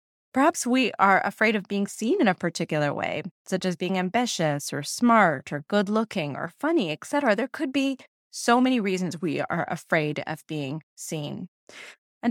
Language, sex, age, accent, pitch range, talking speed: English, female, 20-39, American, 160-230 Hz, 170 wpm